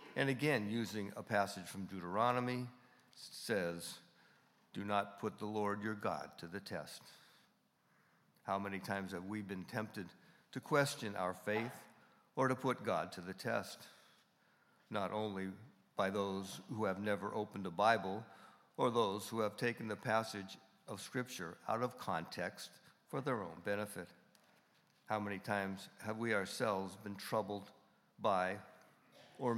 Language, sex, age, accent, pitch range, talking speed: English, male, 60-79, American, 95-115 Hz, 150 wpm